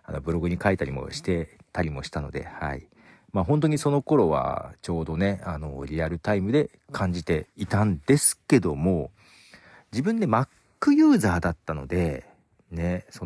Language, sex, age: Japanese, male, 40-59